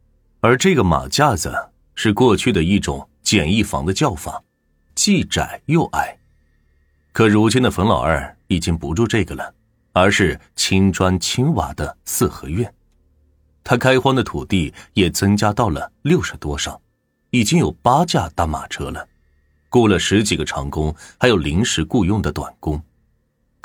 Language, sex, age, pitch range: Chinese, male, 30-49, 75-105 Hz